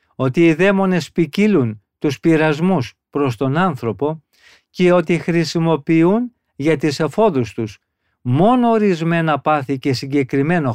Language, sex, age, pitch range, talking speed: Greek, male, 50-69, 135-175 Hz, 115 wpm